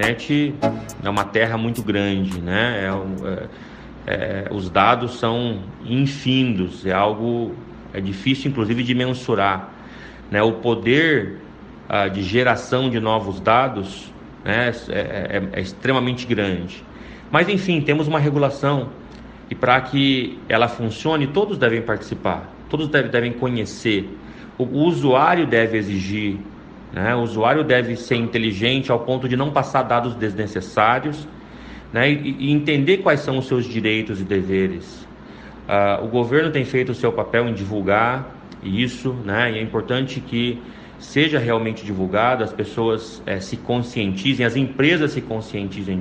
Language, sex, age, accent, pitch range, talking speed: Portuguese, male, 30-49, Brazilian, 105-135 Hz, 140 wpm